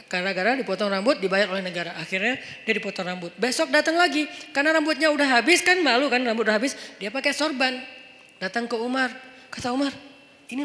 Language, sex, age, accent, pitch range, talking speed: Indonesian, female, 30-49, native, 220-310 Hz, 185 wpm